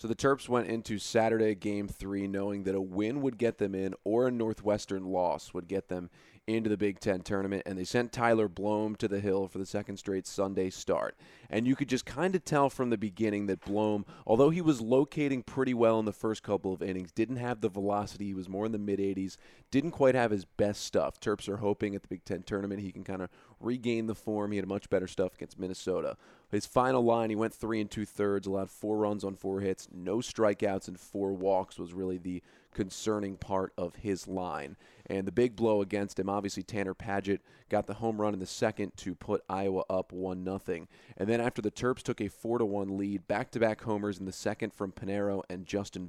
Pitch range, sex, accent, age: 95-110 Hz, male, American, 30-49